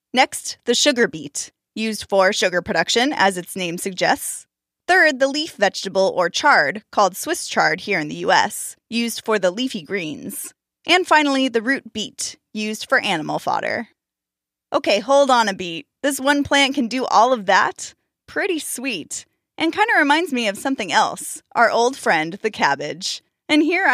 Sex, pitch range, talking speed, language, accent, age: female, 195-270 Hz, 175 wpm, English, American, 10-29